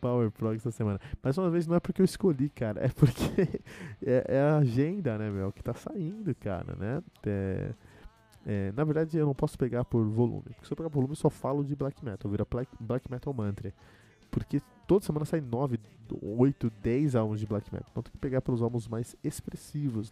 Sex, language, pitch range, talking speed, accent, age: male, Portuguese, 105-135 Hz, 210 wpm, Brazilian, 20-39